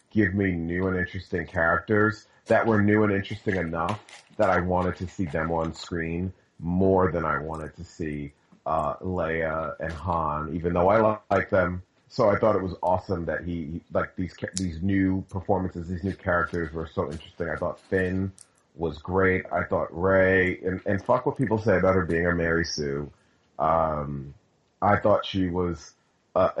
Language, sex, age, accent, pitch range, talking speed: English, male, 30-49, American, 85-95 Hz, 185 wpm